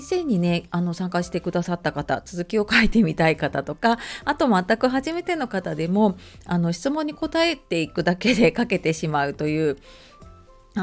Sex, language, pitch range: female, Japanese, 165-245 Hz